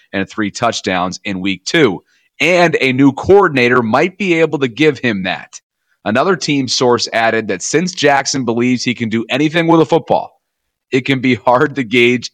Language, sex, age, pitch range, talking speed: English, male, 30-49, 110-140 Hz, 185 wpm